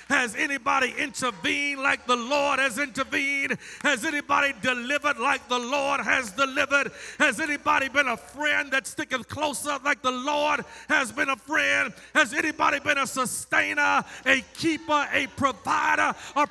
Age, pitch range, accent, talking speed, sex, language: 40-59, 275-320 Hz, American, 150 wpm, male, English